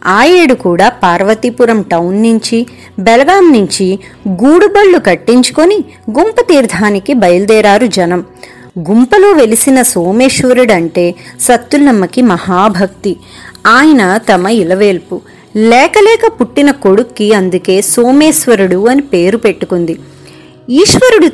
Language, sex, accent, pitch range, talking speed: Telugu, female, native, 190-265 Hz, 85 wpm